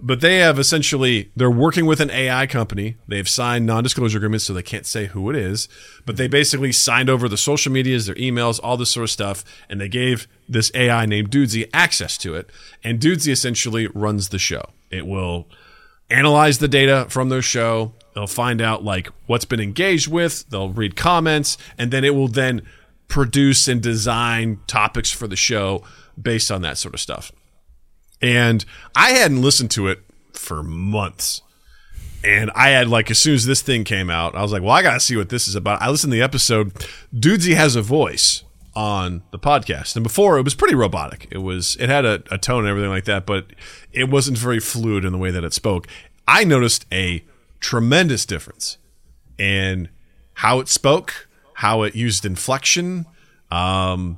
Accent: American